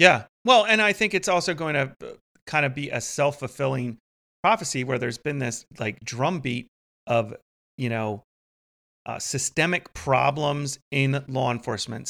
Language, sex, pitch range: English, male, 125-155 Hz